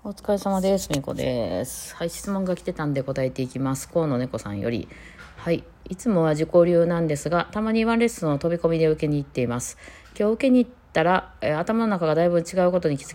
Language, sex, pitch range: Japanese, female, 140-190 Hz